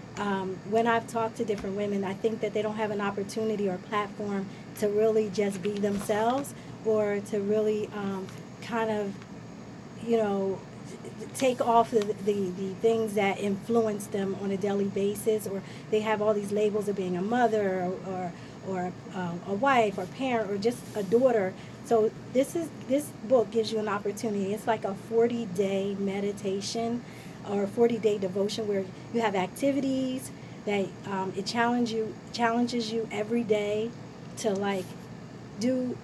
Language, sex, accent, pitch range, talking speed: English, female, American, 195-225 Hz, 165 wpm